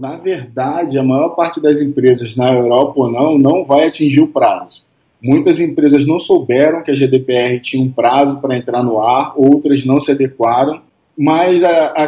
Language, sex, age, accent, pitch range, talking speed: Portuguese, male, 20-39, Brazilian, 140-180 Hz, 180 wpm